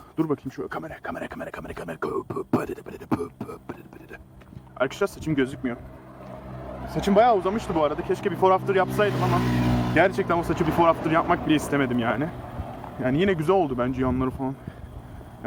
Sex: male